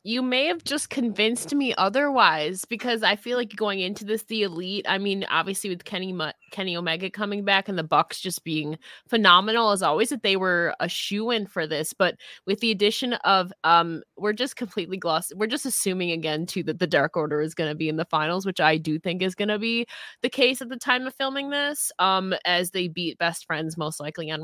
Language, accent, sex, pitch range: English, American, female, 170-220 Hz